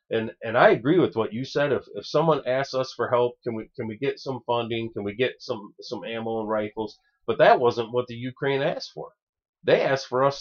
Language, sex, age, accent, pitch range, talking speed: English, male, 30-49, American, 115-180 Hz, 240 wpm